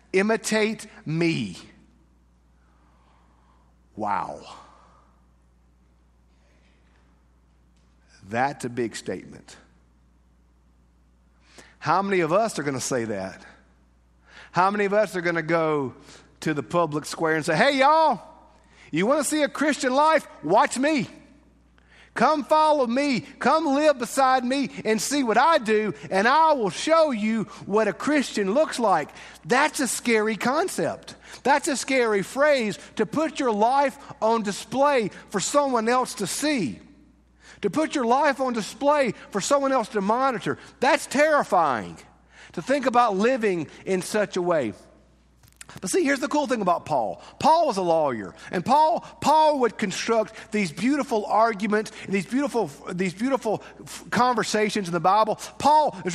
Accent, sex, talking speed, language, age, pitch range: American, male, 145 wpm, English, 50-69, 160-265 Hz